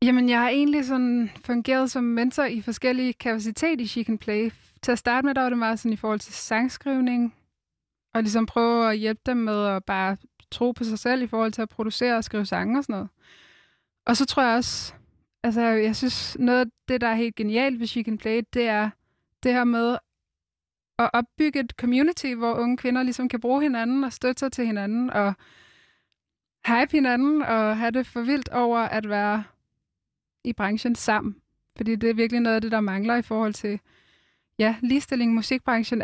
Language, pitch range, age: Danish, 220-255 Hz, 20-39